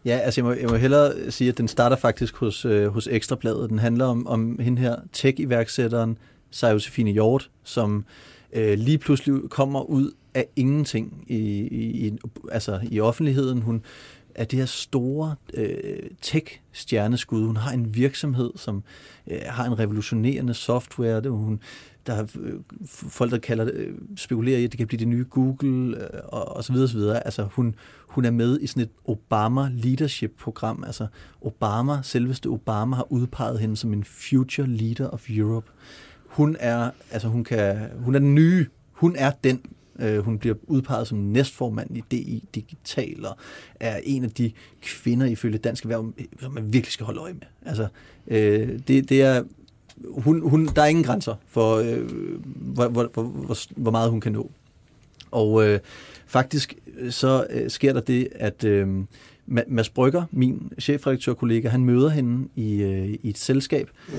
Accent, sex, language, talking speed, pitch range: native, male, Danish, 175 wpm, 110-130 Hz